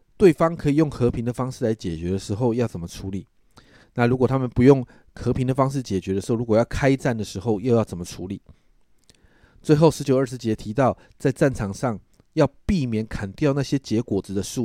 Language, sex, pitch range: Chinese, male, 105-140 Hz